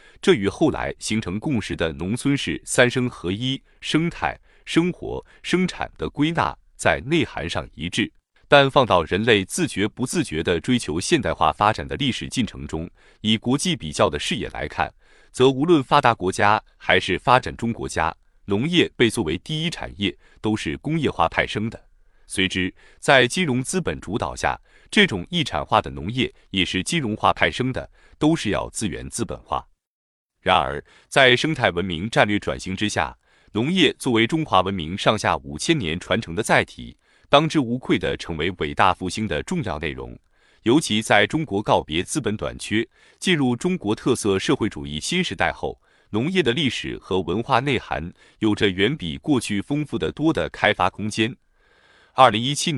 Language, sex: Chinese, male